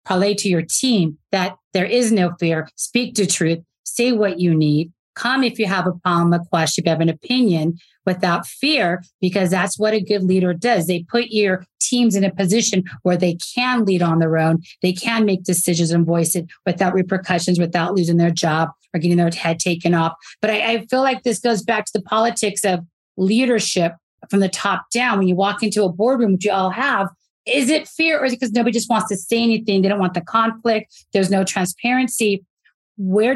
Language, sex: English, female